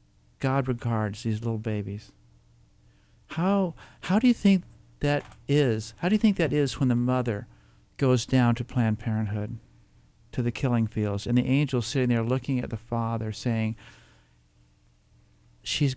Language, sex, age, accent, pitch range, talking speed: English, male, 50-69, American, 110-135 Hz, 155 wpm